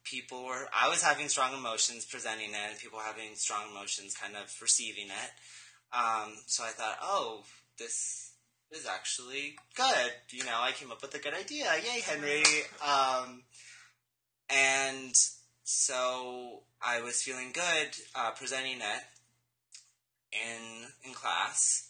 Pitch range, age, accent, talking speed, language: 115-135 Hz, 10-29, American, 140 wpm, English